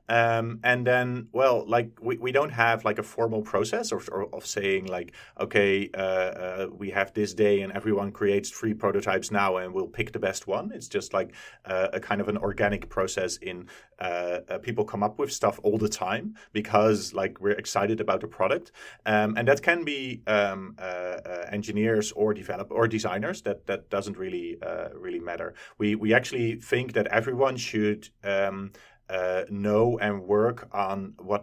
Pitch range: 100-115 Hz